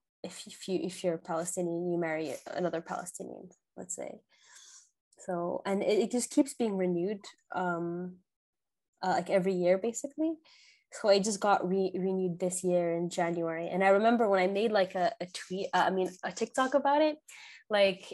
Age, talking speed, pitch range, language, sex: 20-39, 175 wpm, 180-230 Hz, English, female